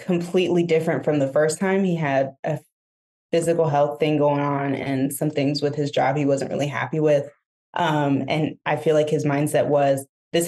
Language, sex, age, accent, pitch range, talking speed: English, female, 20-39, American, 145-165 Hz, 195 wpm